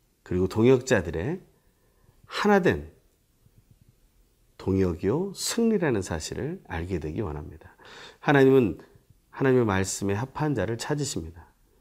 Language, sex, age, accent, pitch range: Korean, male, 40-59, native, 90-145 Hz